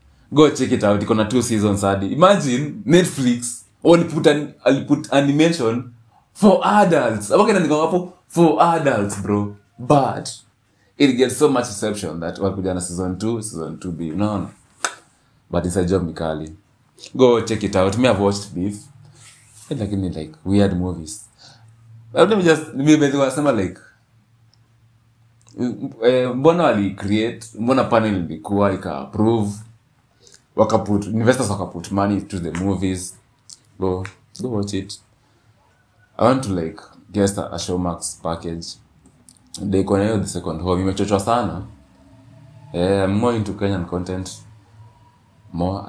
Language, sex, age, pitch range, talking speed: Swahili, male, 30-49, 95-120 Hz, 140 wpm